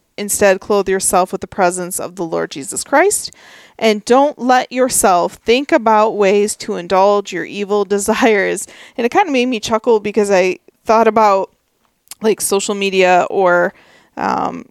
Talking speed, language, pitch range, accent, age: 160 wpm, English, 185-215 Hz, American, 20-39